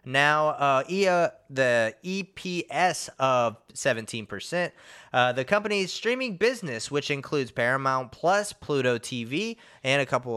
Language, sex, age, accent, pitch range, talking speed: English, male, 20-39, American, 120-165 Hz, 120 wpm